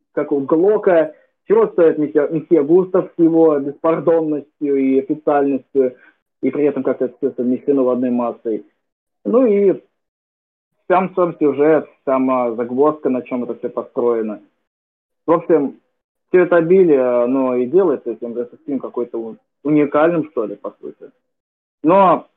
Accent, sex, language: native, male, Russian